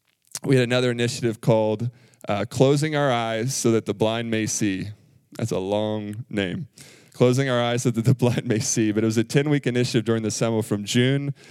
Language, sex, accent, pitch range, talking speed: English, male, American, 110-125 Hz, 205 wpm